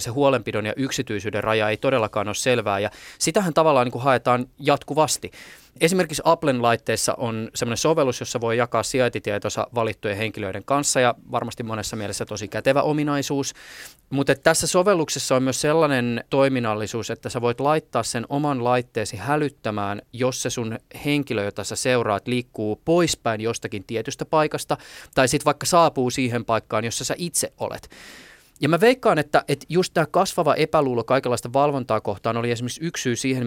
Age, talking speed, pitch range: 20-39, 160 wpm, 115-150 Hz